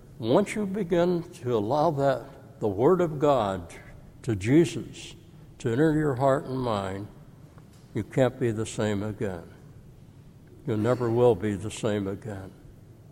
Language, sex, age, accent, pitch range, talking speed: English, male, 60-79, American, 115-145 Hz, 140 wpm